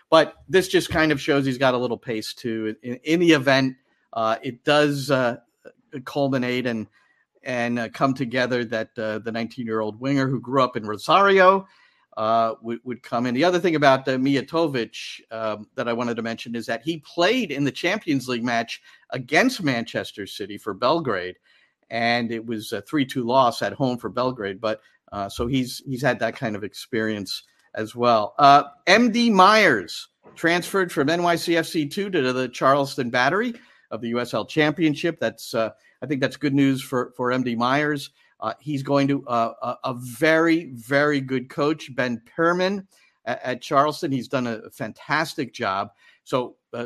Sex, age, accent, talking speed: male, 50-69, American, 175 wpm